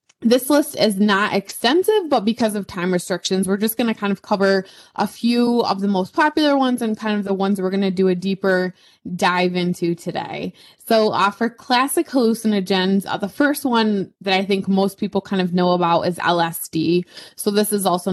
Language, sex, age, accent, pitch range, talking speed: English, female, 20-39, American, 180-210 Hz, 205 wpm